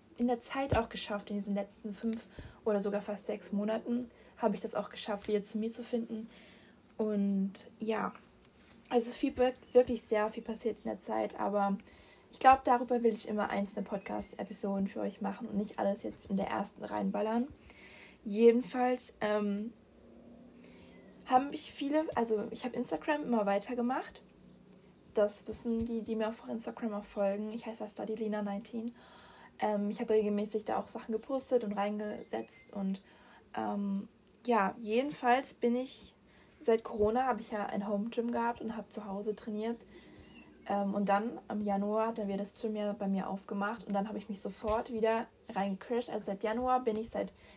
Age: 20-39